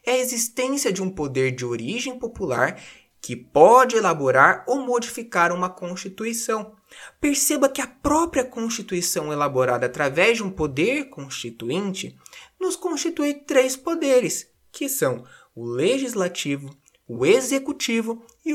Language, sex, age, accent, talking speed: Portuguese, male, 20-39, Brazilian, 125 wpm